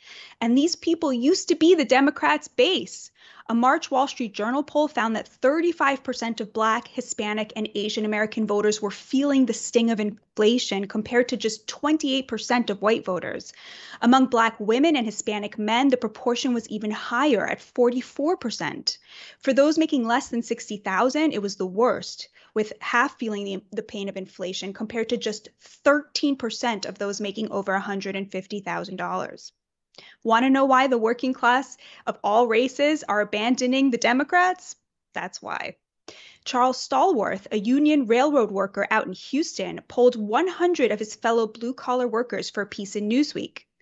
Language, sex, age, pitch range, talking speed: English, female, 20-39, 215-280 Hz, 155 wpm